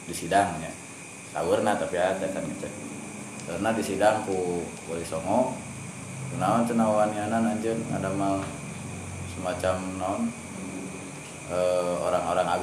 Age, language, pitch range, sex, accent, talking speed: 20-39, Indonesian, 85-110 Hz, male, native, 80 wpm